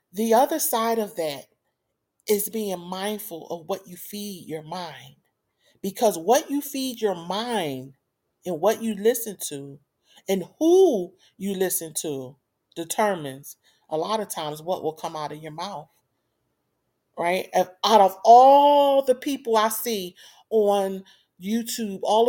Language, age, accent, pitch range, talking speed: English, 40-59, American, 180-225 Hz, 145 wpm